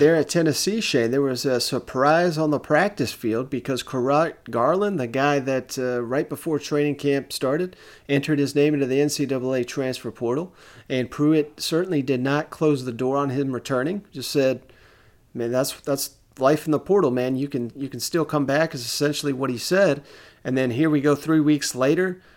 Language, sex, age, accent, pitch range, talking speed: English, male, 40-59, American, 130-160 Hz, 195 wpm